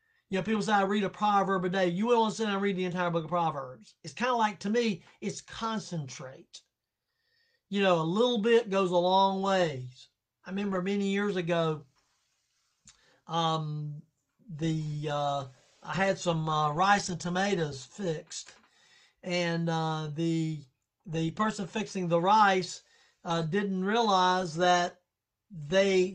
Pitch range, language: 170-210 Hz, English